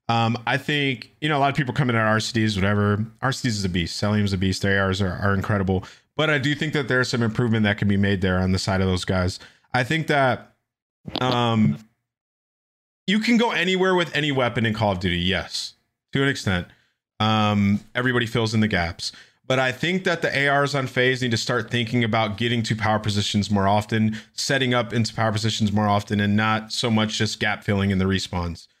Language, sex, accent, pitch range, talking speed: English, male, American, 105-125 Hz, 220 wpm